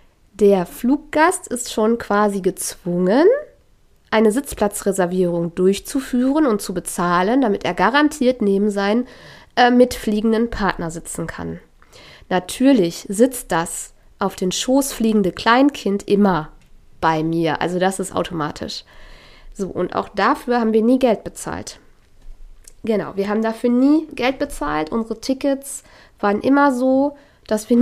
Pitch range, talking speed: 195-260 Hz, 125 wpm